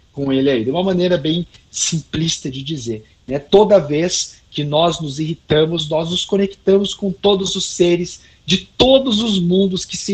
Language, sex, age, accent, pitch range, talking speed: Portuguese, male, 50-69, Brazilian, 150-200 Hz, 180 wpm